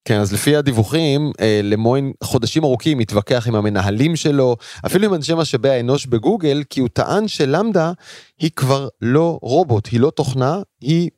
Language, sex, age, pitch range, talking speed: Hebrew, male, 30-49, 120-160 Hz, 155 wpm